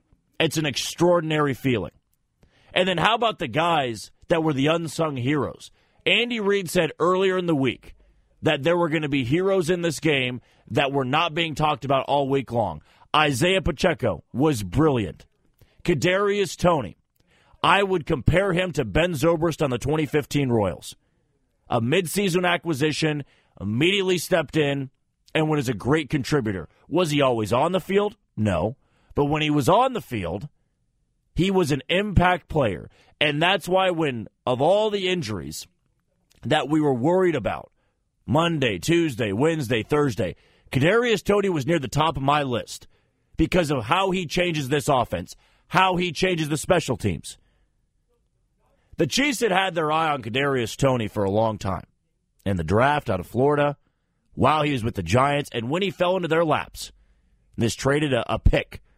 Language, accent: English, American